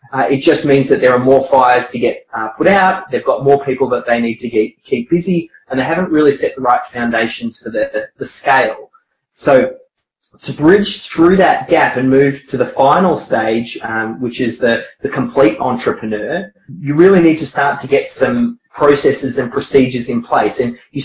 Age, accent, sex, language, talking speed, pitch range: 20-39, Australian, male, English, 200 wpm, 130-175 Hz